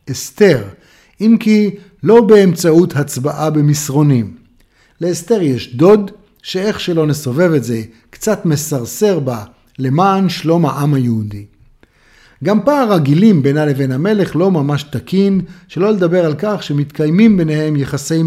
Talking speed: 125 wpm